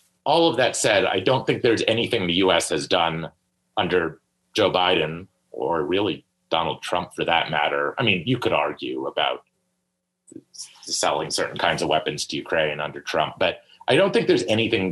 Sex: male